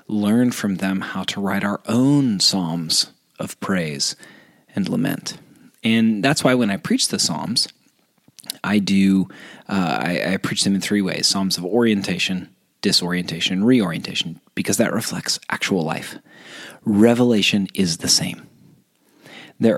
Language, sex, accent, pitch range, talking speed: English, male, American, 90-115 Hz, 140 wpm